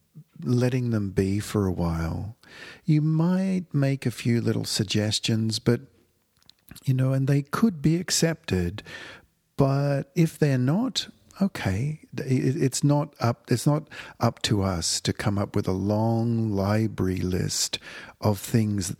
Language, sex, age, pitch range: English, male, 50-69, 100-135 Hz